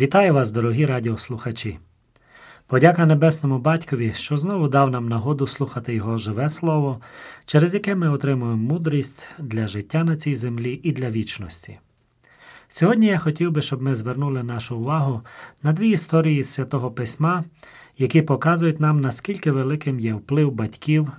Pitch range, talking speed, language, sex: 115-155 Hz, 145 wpm, Ukrainian, male